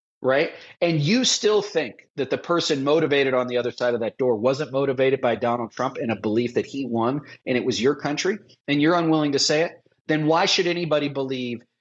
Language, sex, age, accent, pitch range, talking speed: English, male, 40-59, American, 135-190 Hz, 220 wpm